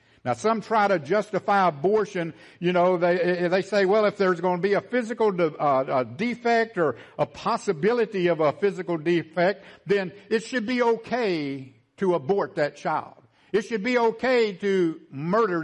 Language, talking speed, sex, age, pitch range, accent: English, 175 wpm, male, 60-79, 180-260 Hz, American